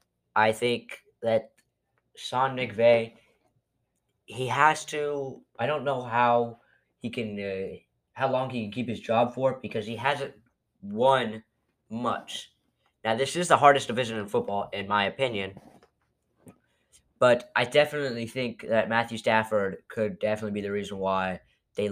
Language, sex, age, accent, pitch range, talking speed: English, male, 10-29, American, 110-135 Hz, 145 wpm